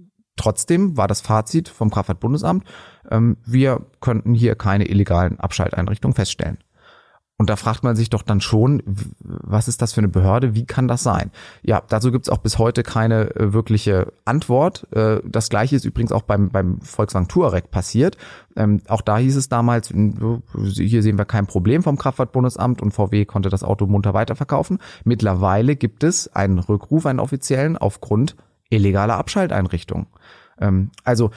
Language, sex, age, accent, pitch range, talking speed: German, male, 30-49, German, 105-125 Hz, 155 wpm